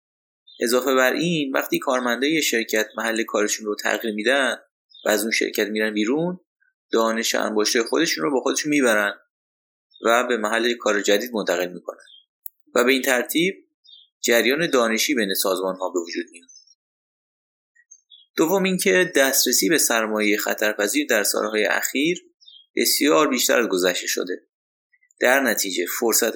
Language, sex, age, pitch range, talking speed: Persian, male, 30-49, 105-160 Hz, 130 wpm